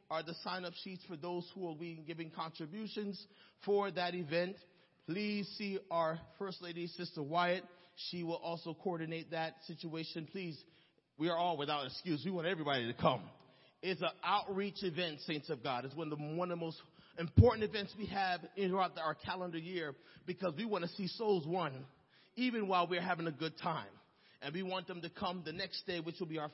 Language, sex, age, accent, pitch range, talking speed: English, male, 30-49, American, 155-185 Hz, 190 wpm